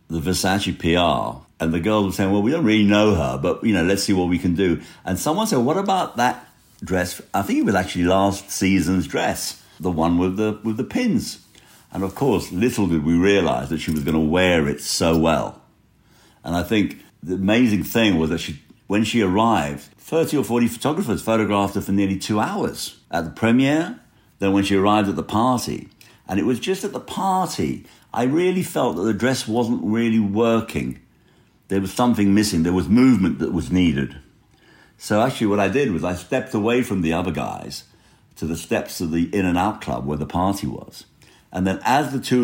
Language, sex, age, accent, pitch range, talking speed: English, male, 60-79, British, 85-110 Hz, 210 wpm